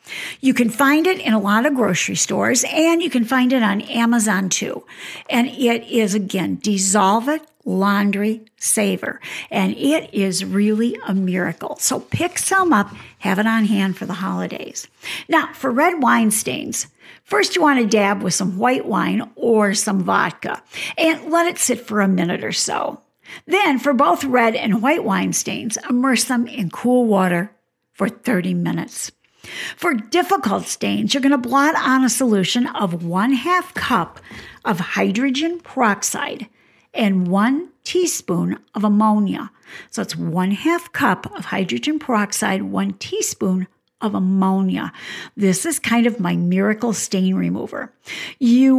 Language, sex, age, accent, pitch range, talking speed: English, female, 60-79, American, 200-280 Hz, 155 wpm